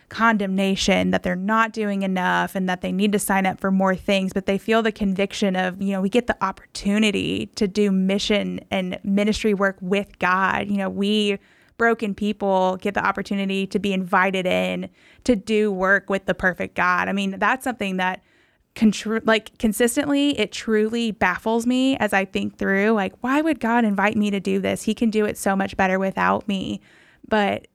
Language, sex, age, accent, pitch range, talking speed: English, female, 20-39, American, 190-220 Hz, 195 wpm